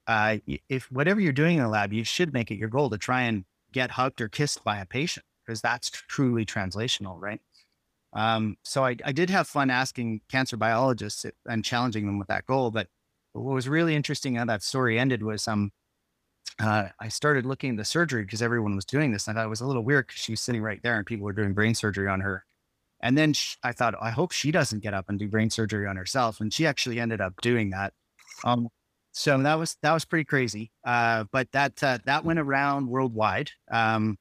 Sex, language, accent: male, English, American